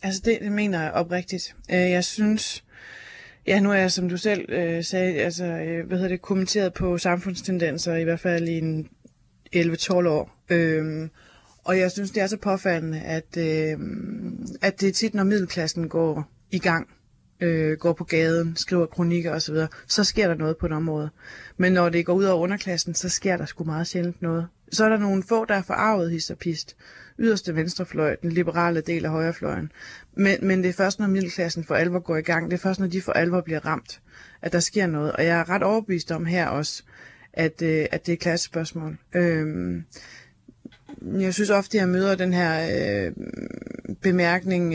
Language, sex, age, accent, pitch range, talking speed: Danish, female, 20-39, native, 160-190 Hz, 190 wpm